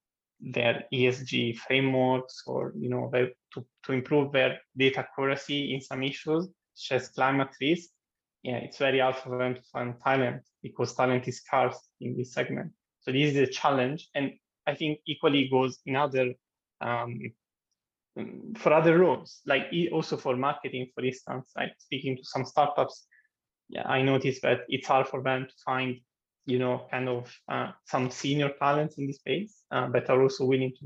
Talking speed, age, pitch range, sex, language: 175 wpm, 20-39, 125-140 Hz, male, English